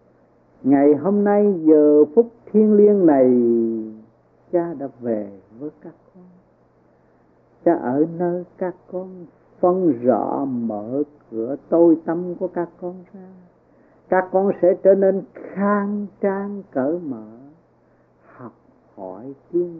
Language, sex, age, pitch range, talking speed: Vietnamese, male, 60-79, 120-185 Hz, 125 wpm